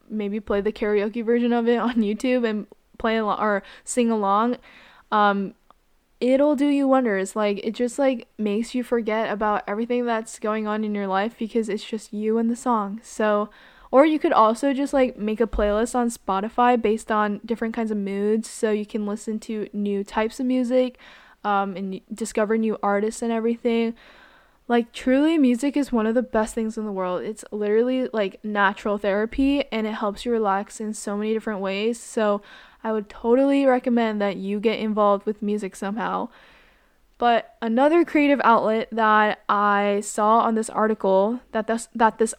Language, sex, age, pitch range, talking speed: English, female, 10-29, 210-240 Hz, 180 wpm